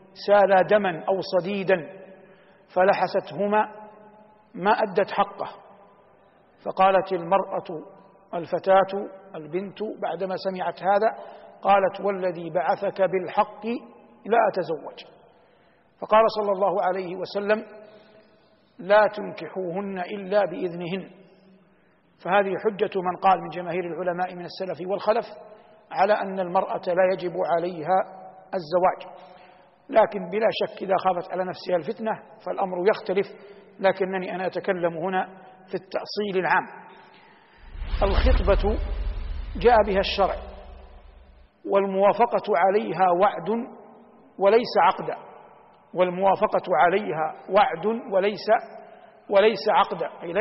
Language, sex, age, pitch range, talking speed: Arabic, male, 60-79, 180-205 Hz, 95 wpm